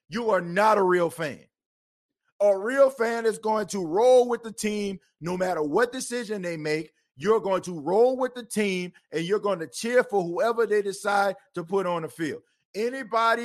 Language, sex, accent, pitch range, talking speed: English, male, American, 195-245 Hz, 195 wpm